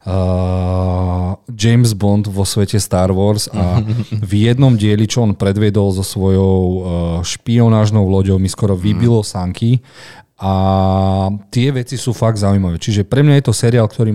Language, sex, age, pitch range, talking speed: Slovak, male, 40-59, 90-110 Hz, 145 wpm